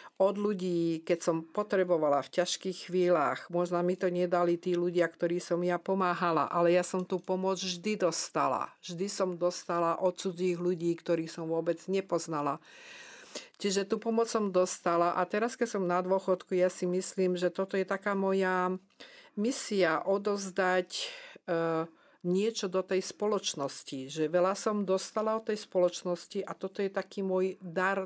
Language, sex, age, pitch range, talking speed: Slovak, female, 50-69, 175-195 Hz, 160 wpm